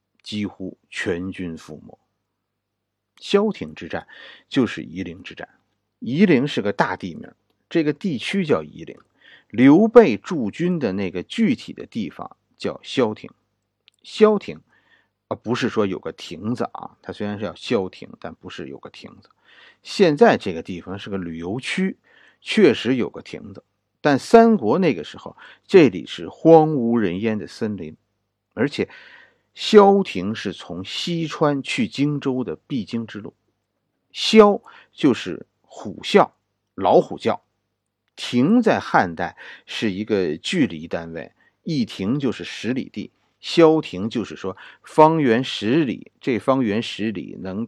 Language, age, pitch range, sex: Chinese, 50-69, 100-165 Hz, male